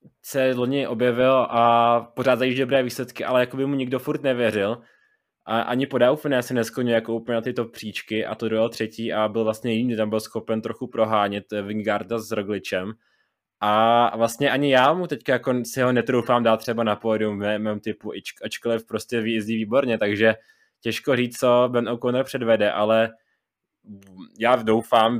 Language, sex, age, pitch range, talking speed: Czech, male, 20-39, 110-120 Hz, 180 wpm